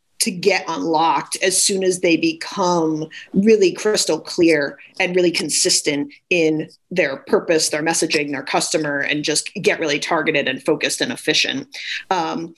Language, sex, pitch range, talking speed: English, female, 150-185 Hz, 150 wpm